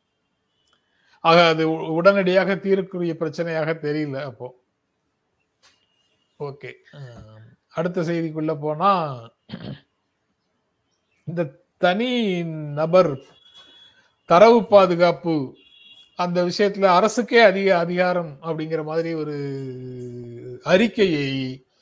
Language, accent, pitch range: Tamil, native, 155-185 Hz